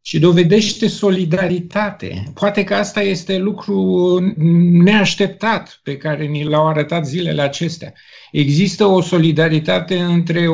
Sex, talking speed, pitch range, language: male, 115 wpm, 145-185 Hz, Romanian